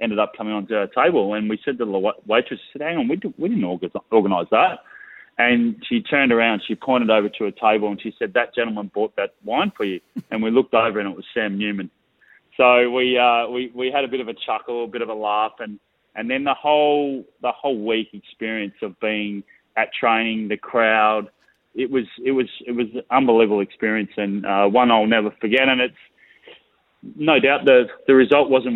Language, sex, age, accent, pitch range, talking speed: English, male, 20-39, Australian, 105-125 Hz, 215 wpm